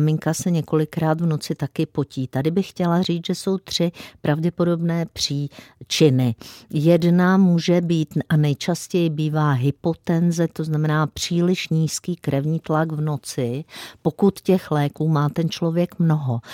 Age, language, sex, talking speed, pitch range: 50-69, Czech, female, 140 wpm, 145-170 Hz